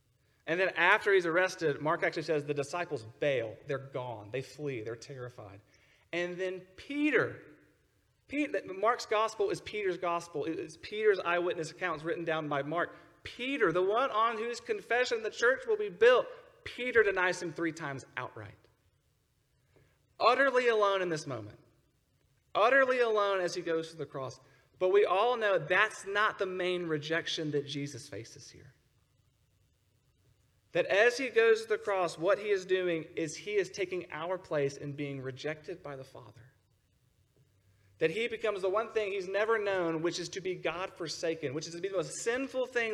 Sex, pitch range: male, 140-210 Hz